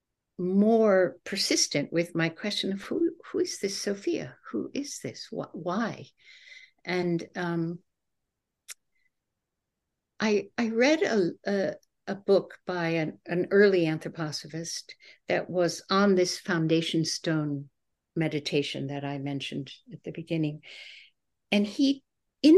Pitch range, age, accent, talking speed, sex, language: 160-205 Hz, 60-79, American, 120 wpm, female, English